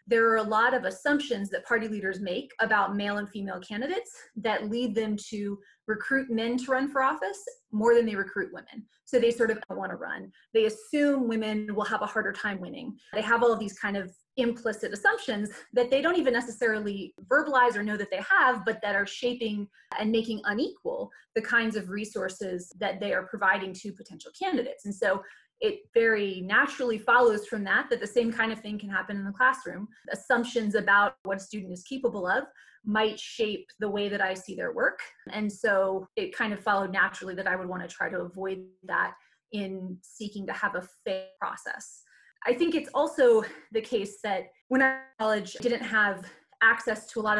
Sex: female